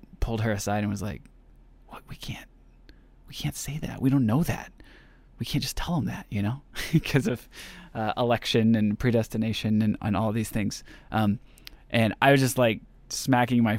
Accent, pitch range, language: American, 110-150 Hz, English